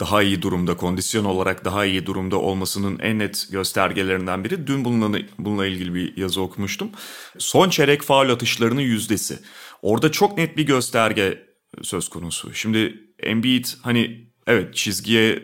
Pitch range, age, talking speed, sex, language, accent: 100-120 Hz, 30-49, 145 wpm, male, Turkish, native